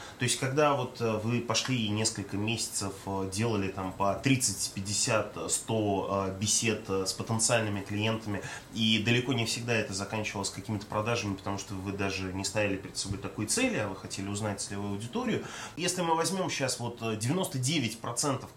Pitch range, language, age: 105-145 Hz, Russian, 20-39